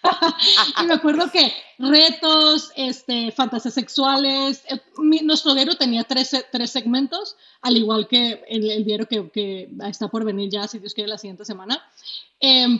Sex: female